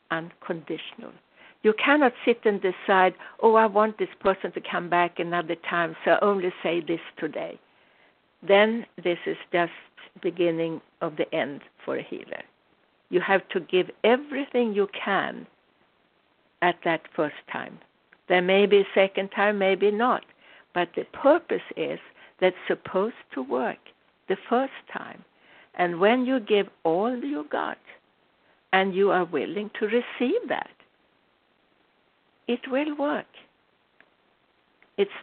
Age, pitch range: 60-79, 180-235 Hz